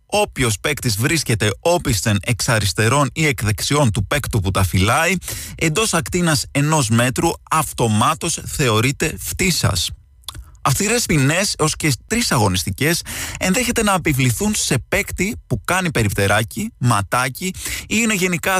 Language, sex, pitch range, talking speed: Greek, male, 105-155 Hz, 120 wpm